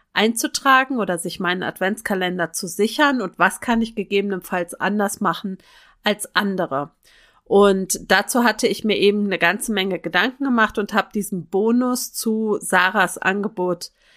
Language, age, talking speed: German, 30-49, 145 wpm